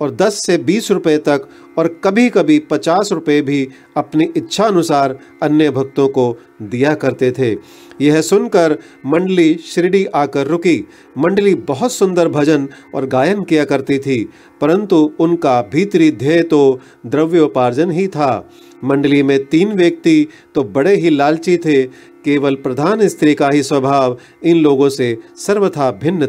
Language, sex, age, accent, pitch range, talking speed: Hindi, male, 40-59, native, 140-180 Hz, 145 wpm